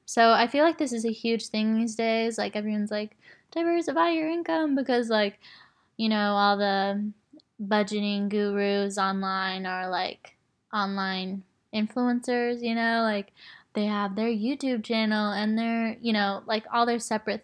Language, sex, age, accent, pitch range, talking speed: English, female, 10-29, American, 210-235 Hz, 160 wpm